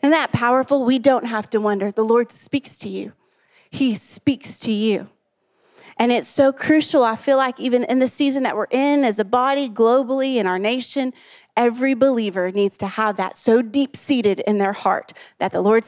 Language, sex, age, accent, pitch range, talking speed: English, female, 30-49, American, 210-265 Hz, 200 wpm